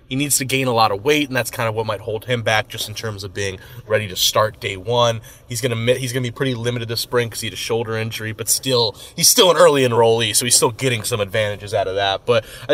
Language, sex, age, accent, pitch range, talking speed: English, male, 20-39, American, 110-130 Hz, 285 wpm